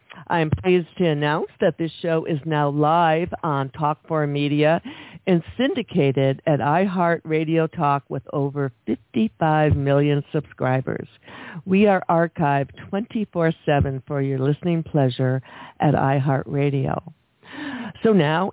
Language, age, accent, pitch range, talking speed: English, 60-79, American, 145-175 Hz, 120 wpm